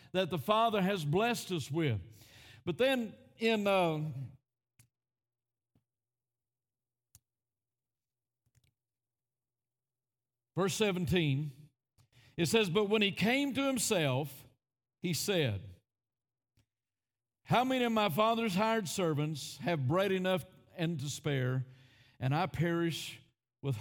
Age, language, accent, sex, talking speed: 50-69, English, American, male, 100 wpm